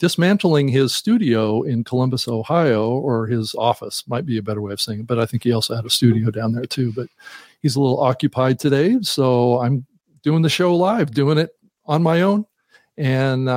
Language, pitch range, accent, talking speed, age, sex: English, 115-150 Hz, American, 205 wpm, 50-69, male